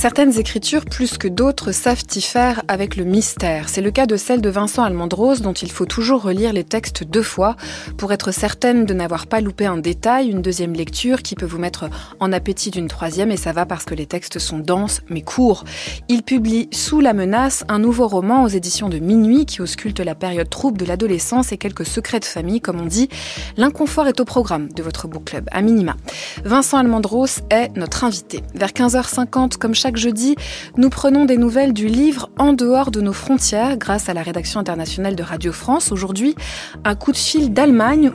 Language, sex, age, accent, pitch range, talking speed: French, female, 20-39, French, 185-250 Hz, 210 wpm